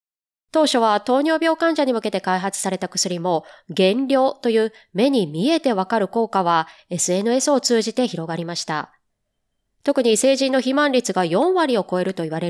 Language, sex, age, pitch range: Japanese, female, 20-39, 185-280 Hz